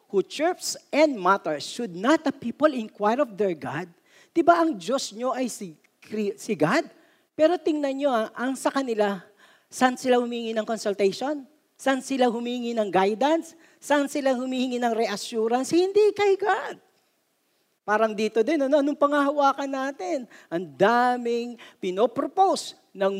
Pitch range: 195-285 Hz